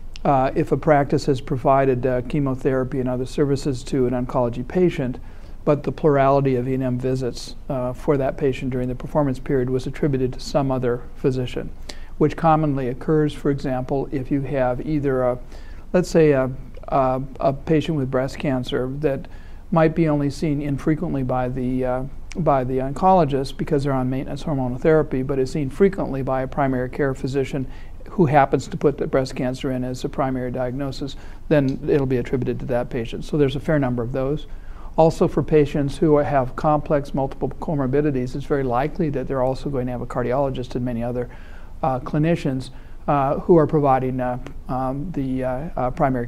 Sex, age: male, 50-69